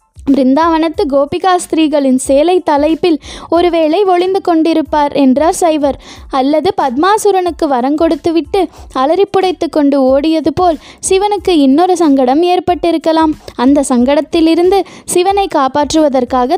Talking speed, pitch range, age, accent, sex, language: 90 wpm, 280-360 Hz, 20-39, native, female, Tamil